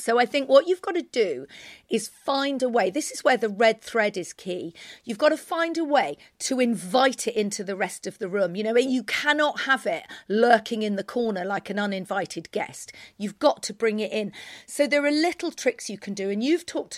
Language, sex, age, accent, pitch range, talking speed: English, female, 40-59, British, 200-260 Hz, 235 wpm